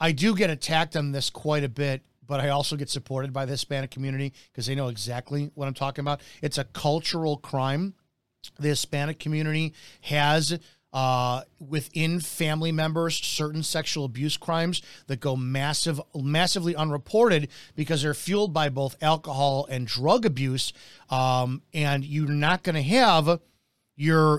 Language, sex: English, male